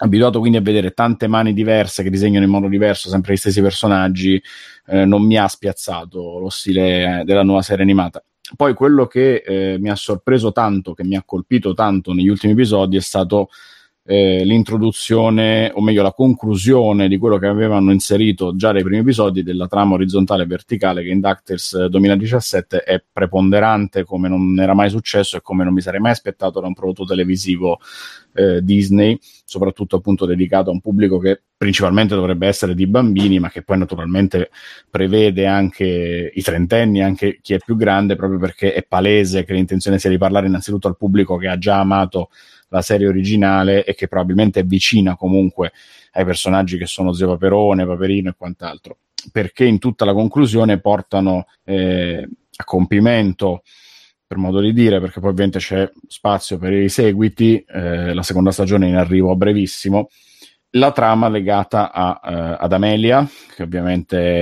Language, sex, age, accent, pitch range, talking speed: Italian, male, 30-49, native, 95-105 Hz, 170 wpm